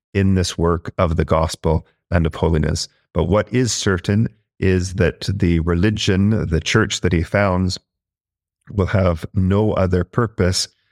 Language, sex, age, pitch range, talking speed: English, male, 40-59, 85-105 Hz, 150 wpm